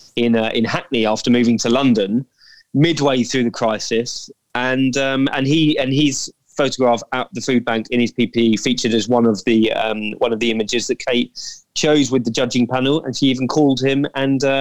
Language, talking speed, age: English, 200 wpm, 20-39